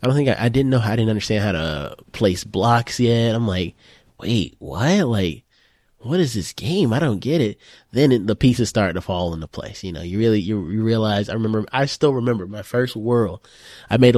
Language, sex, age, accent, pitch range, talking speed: English, male, 20-39, American, 100-125 Hz, 230 wpm